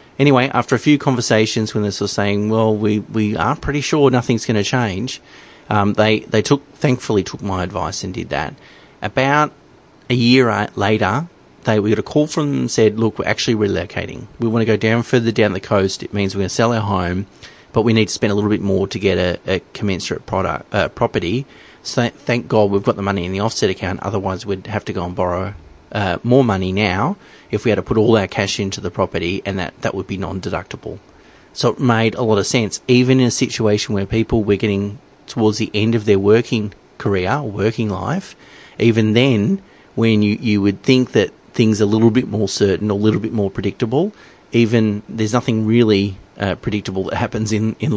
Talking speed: 220 wpm